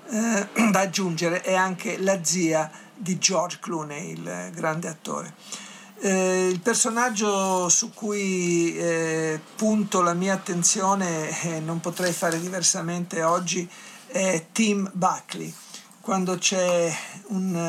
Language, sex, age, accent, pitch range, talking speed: Italian, male, 50-69, native, 165-195 Hz, 120 wpm